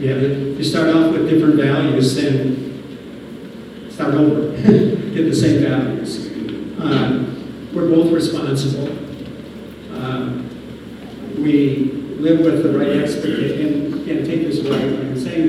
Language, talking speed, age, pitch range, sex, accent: English, 135 wpm, 50-69, 140-170 Hz, male, American